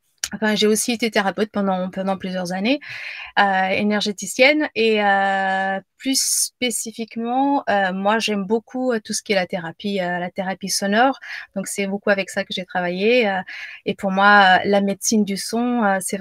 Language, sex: French, female